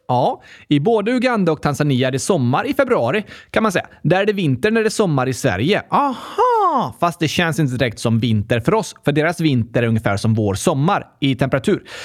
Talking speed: 225 wpm